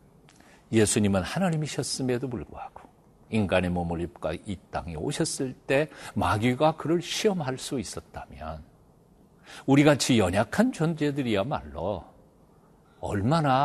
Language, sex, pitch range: Korean, male, 95-150 Hz